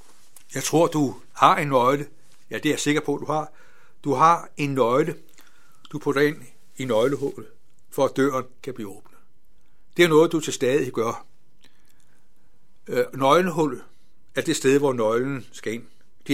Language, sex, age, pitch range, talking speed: Danish, male, 60-79, 125-155 Hz, 165 wpm